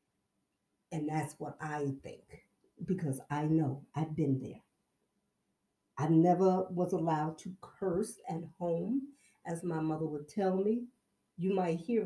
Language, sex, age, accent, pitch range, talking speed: English, female, 50-69, American, 165-215 Hz, 140 wpm